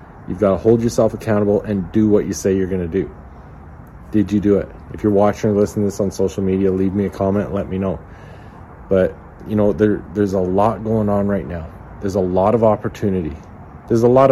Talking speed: 230 wpm